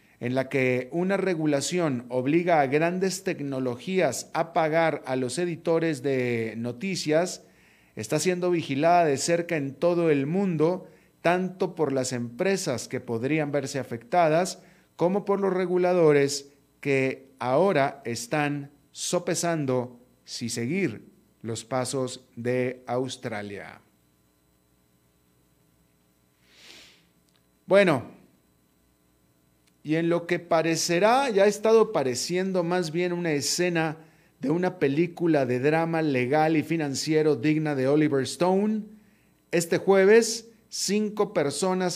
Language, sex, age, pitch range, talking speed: Spanish, male, 40-59, 125-170 Hz, 110 wpm